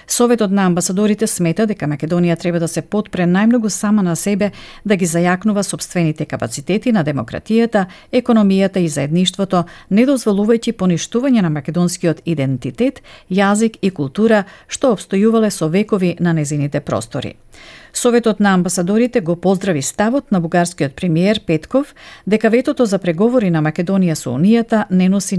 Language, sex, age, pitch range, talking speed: Bulgarian, female, 50-69, 170-225 Hz, 140 wpm